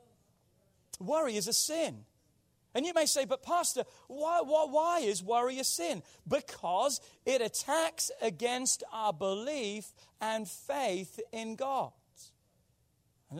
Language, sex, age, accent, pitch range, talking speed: English, male, 40-59, British, 195-255 Hz, 125 wpm